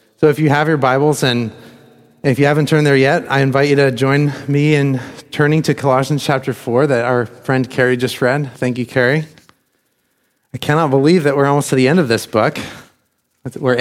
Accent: American